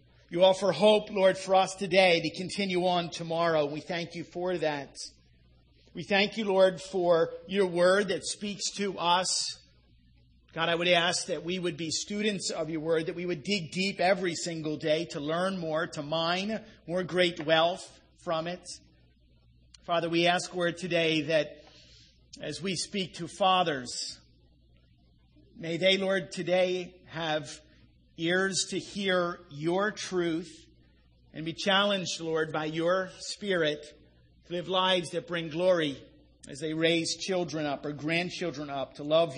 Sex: male